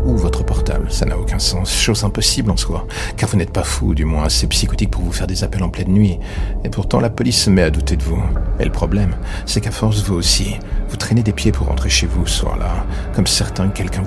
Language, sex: French, male